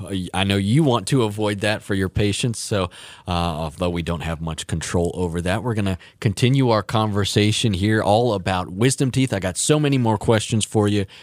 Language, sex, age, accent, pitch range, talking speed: English, male, 30-49, American, 95-125 Hz, 210 wpm